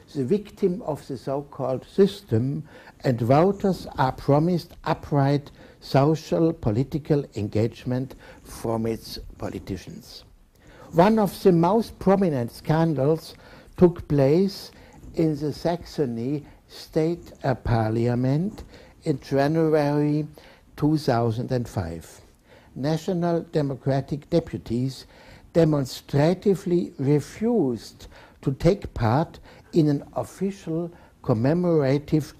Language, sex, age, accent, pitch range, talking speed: English, male, 60-79, German, 125-165 Hz, 85 wpm